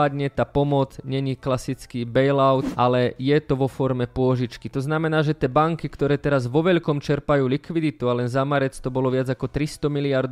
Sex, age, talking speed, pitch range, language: male, 20-39, 190 wpm, 130-150 Hz, Slovak